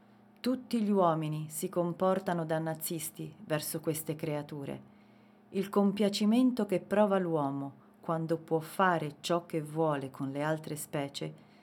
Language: Italian